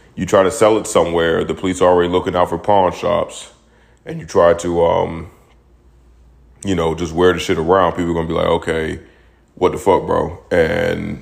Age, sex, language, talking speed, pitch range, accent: 30-49, male, English, 210 wpm, 85-100 Hz, American